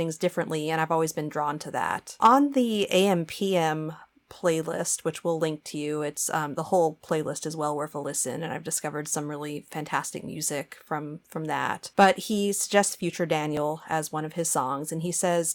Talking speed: 195 wpm